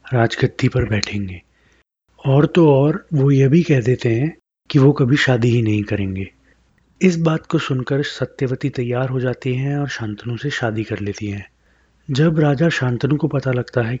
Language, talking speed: English, 180 wpm